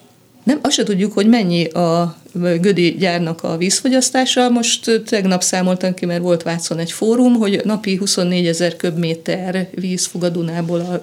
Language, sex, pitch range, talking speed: Hungarian, female, 175-210 Hz, 150 wpm